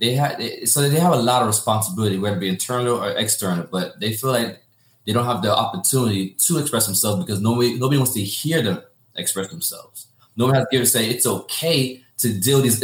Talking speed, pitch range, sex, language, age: 215 wpm, 105-125 Hz, male, English, 20-39